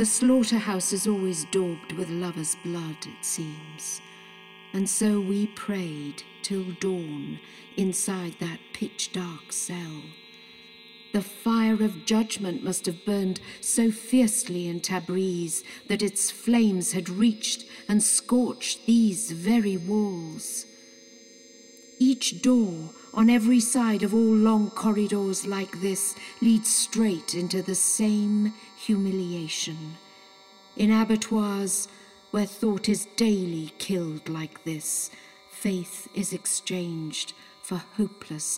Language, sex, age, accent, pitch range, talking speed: English, female, 50-69, British, 175-215 Hz, 110 wpm